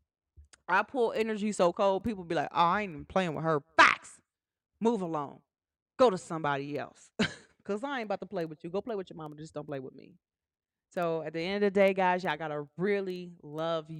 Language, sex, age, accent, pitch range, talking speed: English, female, 30-49, American, 155-240 Hz, 225 wpm